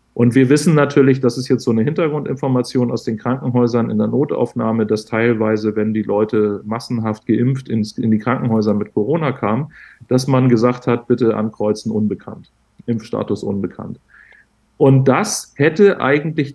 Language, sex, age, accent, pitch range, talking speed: German, male, 40-59, German, 110-135 Hz, 150 wpm